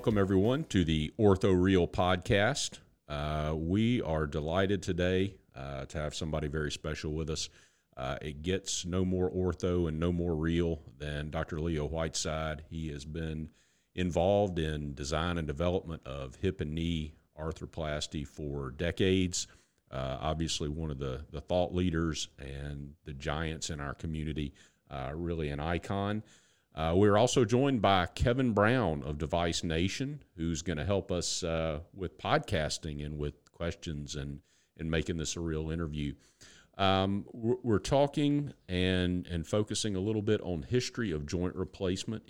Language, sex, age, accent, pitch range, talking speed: English, male, 40-59, American, 75-95 Hz, 155 wpm